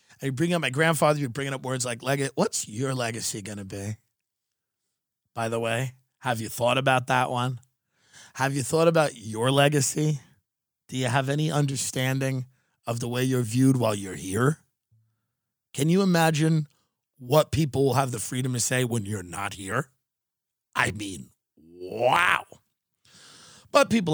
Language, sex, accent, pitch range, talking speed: English, male, American, 110-140 Hz, 160 wpm